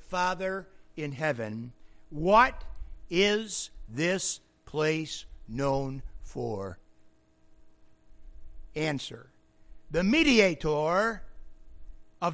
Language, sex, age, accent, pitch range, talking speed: English, male, 60-79, American, 150-230 Hz, 65 wpm